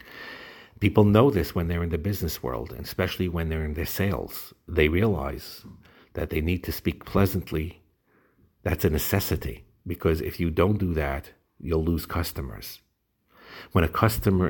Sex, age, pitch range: male, 50-69, 80-100 Hz